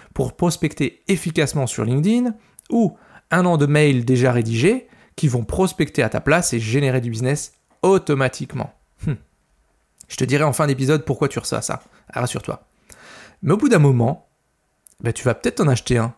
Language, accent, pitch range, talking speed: French, French, 125-175 Hz, 170 wpm